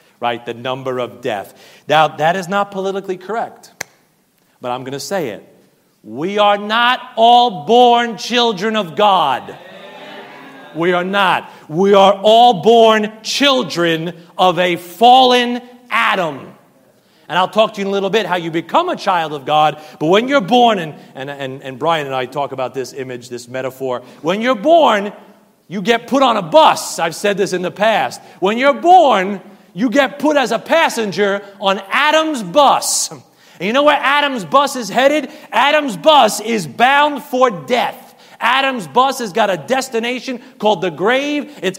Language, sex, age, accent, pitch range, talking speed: English, male, 40-59, American, 195-275 Hz, 175 wpm